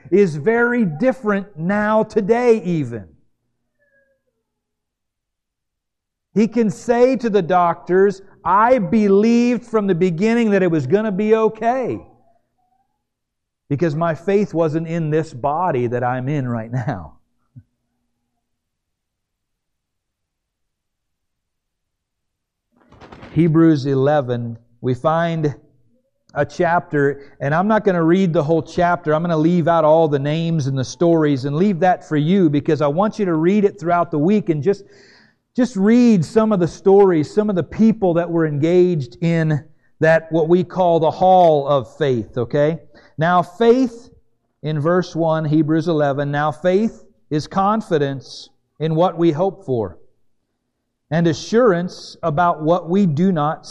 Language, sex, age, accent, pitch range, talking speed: English, male, 50-69, American, 135-195 Hz, 140 wpm